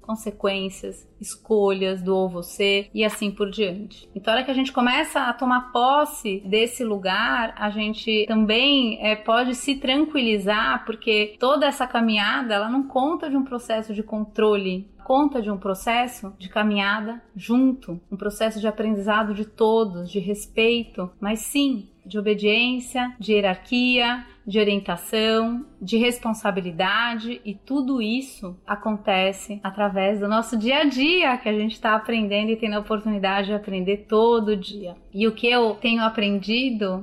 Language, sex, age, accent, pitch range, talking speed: Portuguese, female, 30-49, Brazilian, 195-235 Hz, 150 wpm